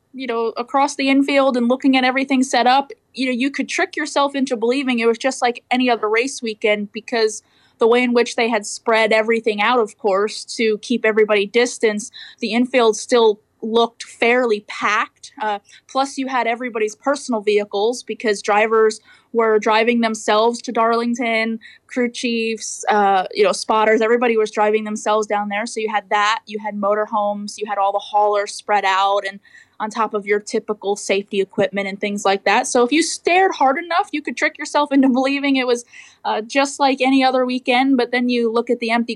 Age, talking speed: 20-39, 195 wpm